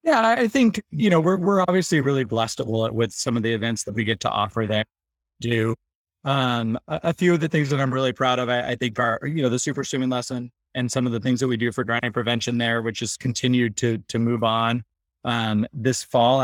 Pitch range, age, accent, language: 110-130 Hz, 20-39, American, English